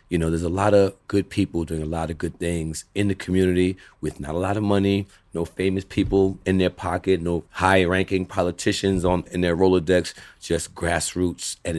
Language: English